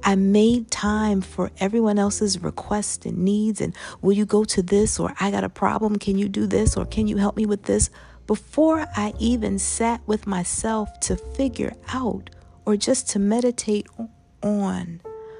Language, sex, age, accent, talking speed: English, female, 40-59, American, 175 wpm